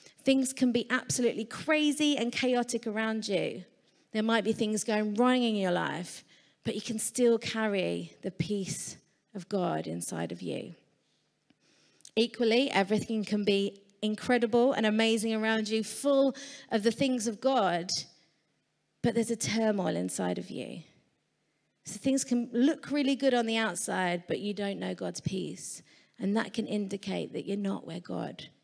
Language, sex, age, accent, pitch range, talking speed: English, female, 30-49, British, 200-260 Hz, 160 wpm